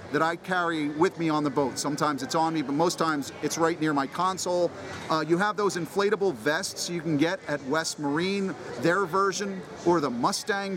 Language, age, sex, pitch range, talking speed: English, 40-59, male, 150-195 Hz, 205 wpm